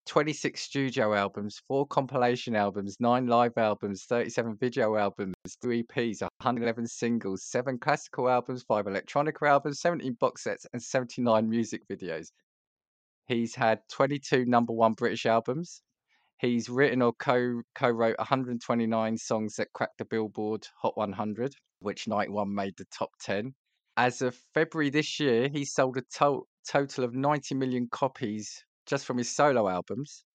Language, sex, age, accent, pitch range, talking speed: English, male, 20-39, British, 105-130 Hz, 150 wpm